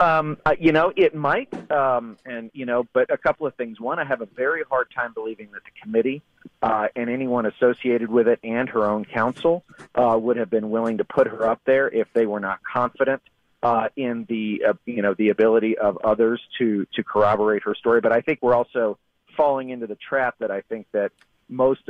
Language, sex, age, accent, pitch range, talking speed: English, male, 40-59, American, 115-155 Hz, 220 wpm